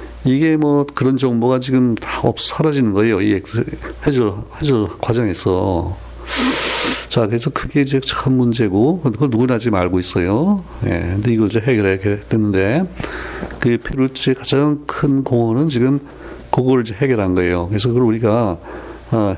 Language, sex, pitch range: Korean, male, 100-130 Hz